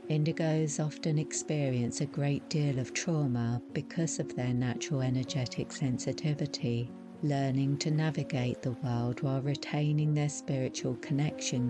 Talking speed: 125 wpm